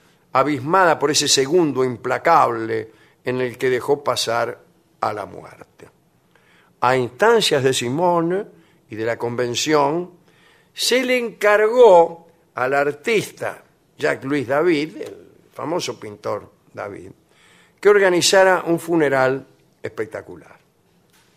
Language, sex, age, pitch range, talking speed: Spanish, male, 50-69, 140-185 Hz, 105 wpm